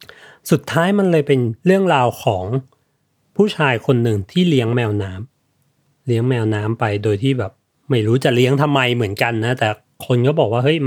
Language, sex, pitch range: Thai, male, 120-155 Hz